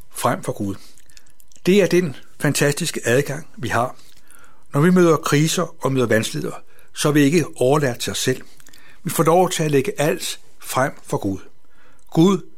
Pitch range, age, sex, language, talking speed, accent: 130-165 Hz, 60-79, male, Danish, 170 wpm, native